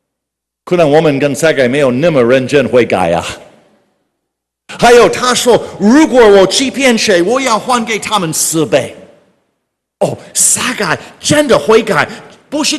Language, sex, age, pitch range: Chinese, male, 50-69, 140-200 Hz